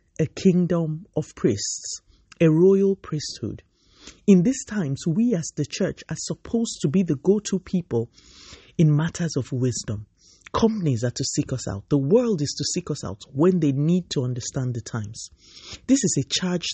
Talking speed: 175 wpm